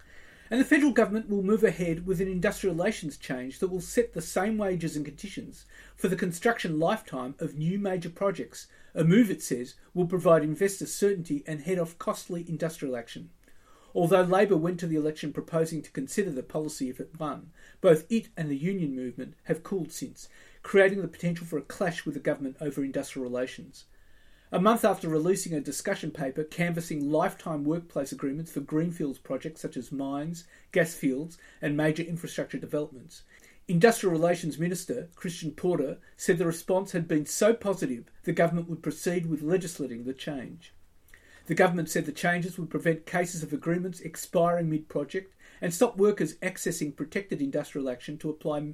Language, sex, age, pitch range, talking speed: English, male, 40-59, 150-185 Hz, 175 wpm